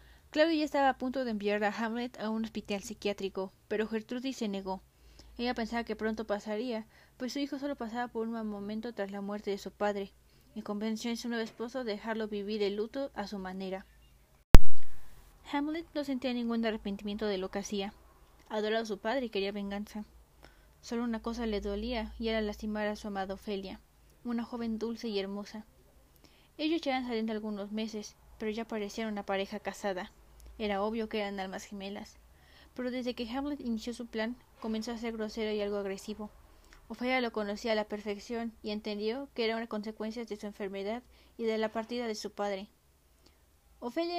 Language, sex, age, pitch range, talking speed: Spanish, female, 20-39, 205-240 Hz, 185 wpm